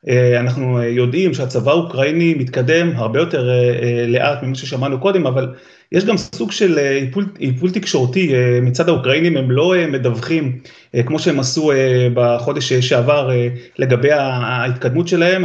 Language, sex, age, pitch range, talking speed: Hebrew, male, 30-49, 125-165 Hz, 125 wpm